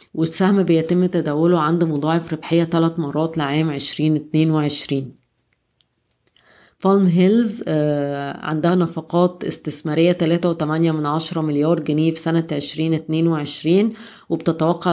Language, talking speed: Arabic, 90 wpm